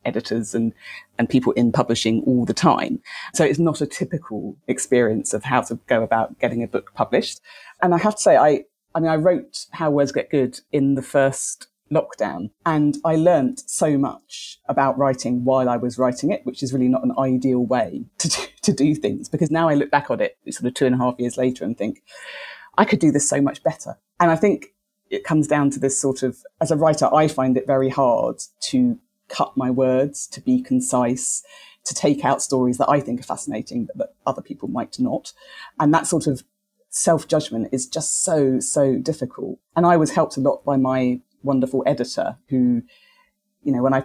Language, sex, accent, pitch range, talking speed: English, female, British, 130-170 Hz, 215 wpm